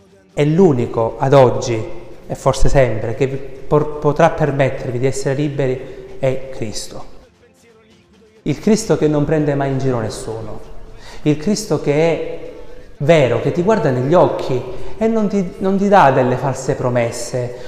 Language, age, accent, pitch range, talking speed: Italian, 30-49, native, 130-175 Hz, 150 wpm